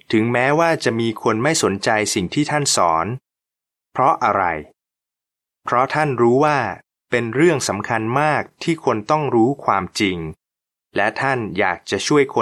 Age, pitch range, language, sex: 20-39, 105-150 Hz, Thai, male